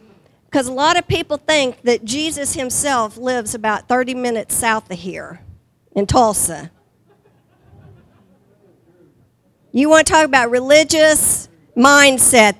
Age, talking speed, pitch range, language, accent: 50-69, 120 wpm, 205-270 Hz, English, American